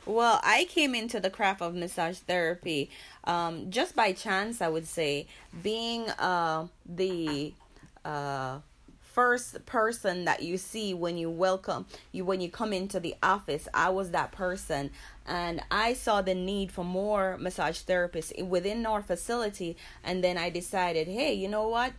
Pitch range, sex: 170-220 Hz, female